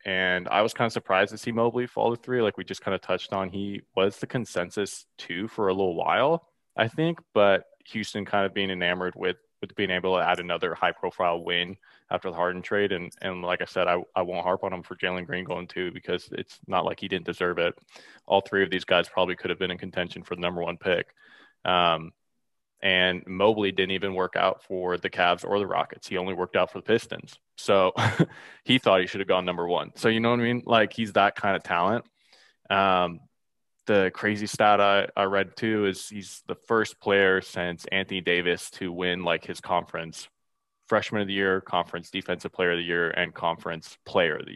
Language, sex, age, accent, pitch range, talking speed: English, male, 20-39, American, 90-100 Hz, 225 wpm